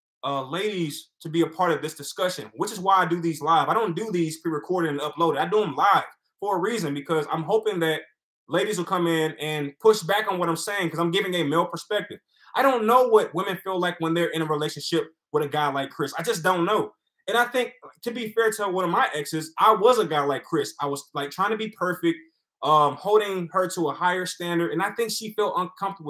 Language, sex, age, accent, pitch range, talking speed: English, male, 20-39, American, 165-210 Hz, 250 wpm